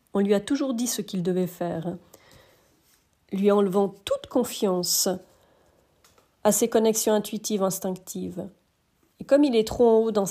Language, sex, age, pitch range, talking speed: French, female, 40-59, 175-215 Hz, 150 wpm